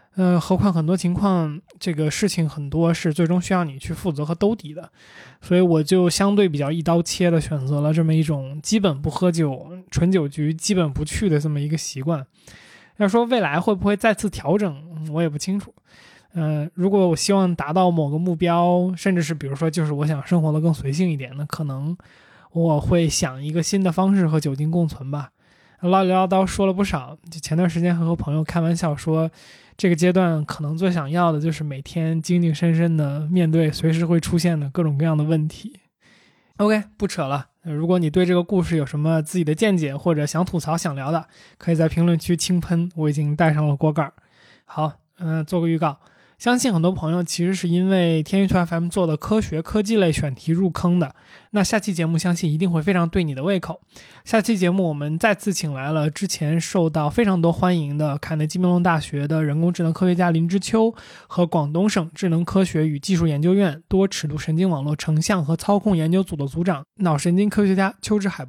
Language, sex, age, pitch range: Chinese, male, 20-39, 155-185 Hz